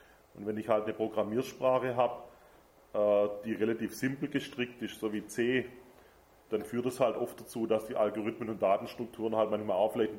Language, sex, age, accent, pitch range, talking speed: German, male, 30-49, German, 110-130 Hz, 185 wpm